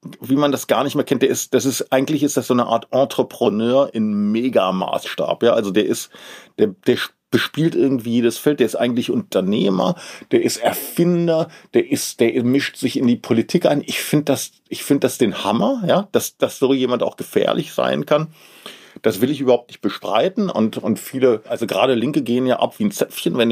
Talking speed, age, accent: 210 wpm, 50-69, German